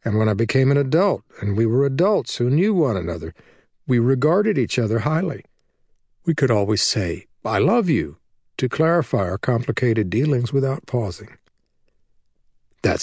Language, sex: English, male